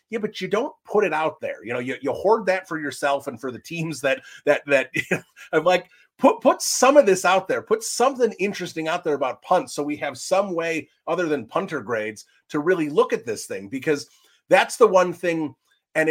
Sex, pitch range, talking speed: male, 135-180 Hz, 230 wpm